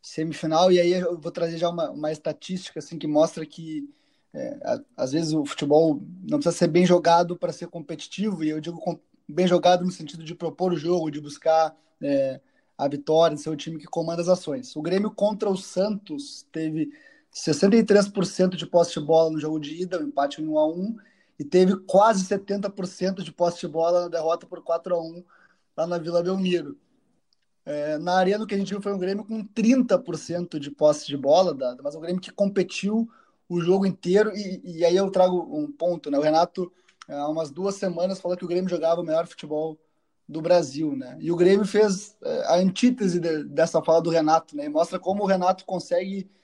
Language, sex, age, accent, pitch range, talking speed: Portuguese, male, 20-39, Brazilian, 160-195 Hz, 210 wpm